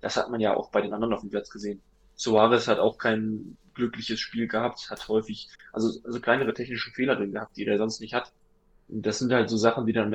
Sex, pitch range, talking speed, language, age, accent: male, 110-120 Hz, 250 wpm, German, 10-29, German